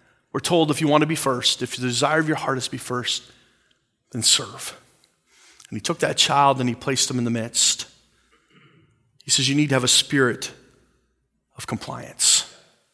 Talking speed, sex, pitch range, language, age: 195 wpm, male, 130-160 Hz, English, 30-49